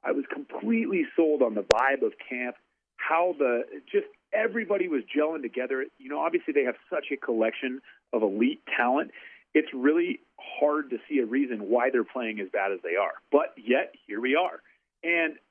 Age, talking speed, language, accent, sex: 40-59, 185 wpm, English, American, male